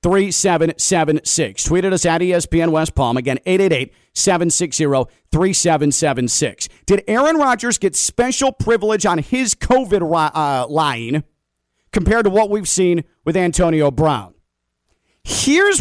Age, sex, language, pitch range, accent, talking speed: 40-59, male, English, 150-205 Hz, American, 150 wpm